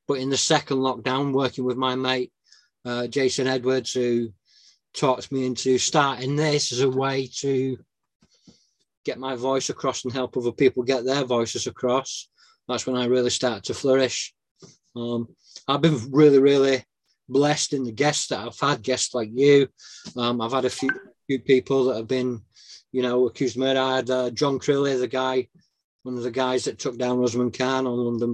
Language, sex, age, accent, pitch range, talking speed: English, male, 20-39, British, 120-130 Hz, 190 wpm